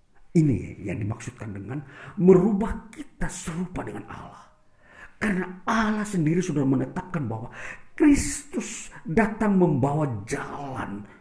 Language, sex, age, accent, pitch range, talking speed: Indonesian, male, 50-69, native, 130-205 Hz, 100 wpm